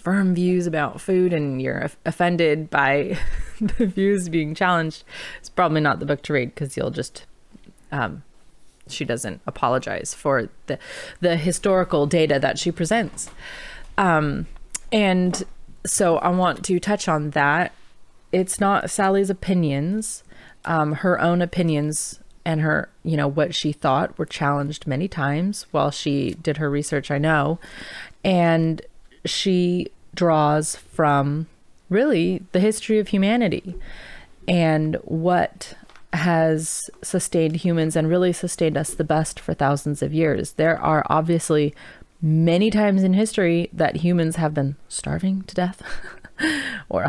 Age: 30-49